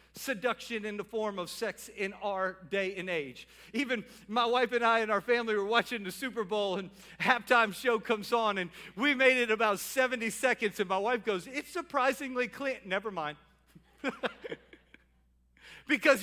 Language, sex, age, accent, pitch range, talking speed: English, male, 50-69, American, 200-250 Hz, 170 wpm